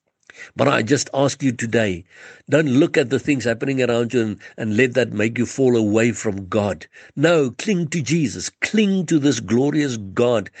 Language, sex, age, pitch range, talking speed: English, male, 60-79, 115-145 Hz, 185 wpm